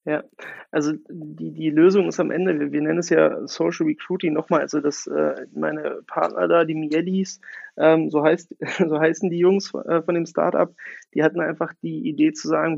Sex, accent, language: male, German, German